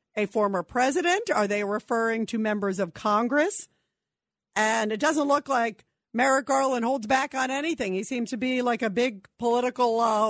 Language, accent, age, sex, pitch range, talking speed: English, American, 50-69, female, 205-255 Hz, 175 wpm